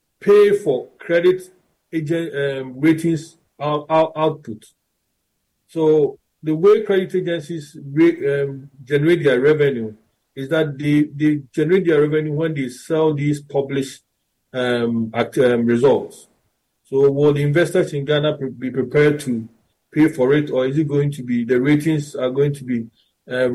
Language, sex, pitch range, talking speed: English, male, 130-160 Hz, 140 wpm